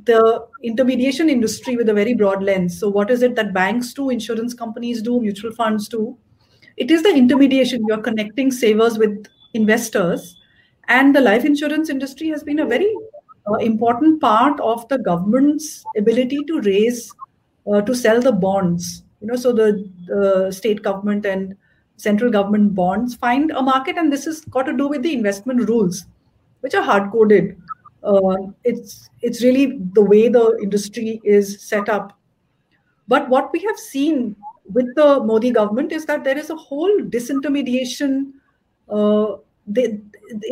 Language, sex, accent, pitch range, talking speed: English, female, Indian, 210-275 Hz, 165 wpm